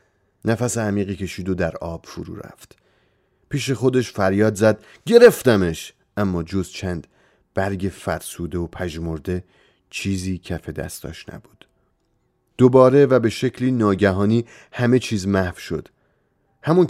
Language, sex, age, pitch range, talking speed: Persian, male, 30-49, 95-120 Hz, 120 wpm